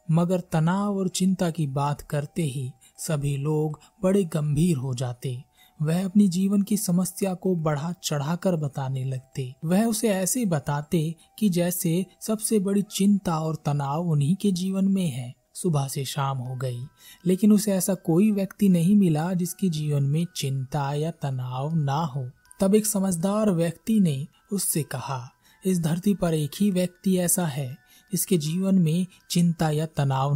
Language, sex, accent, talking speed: Hindi, male, native, 160 wpm